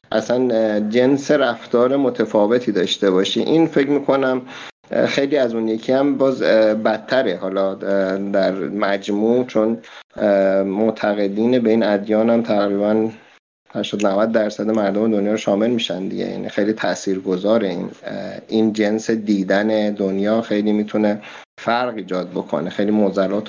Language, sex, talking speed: Persian, male, 125 wpm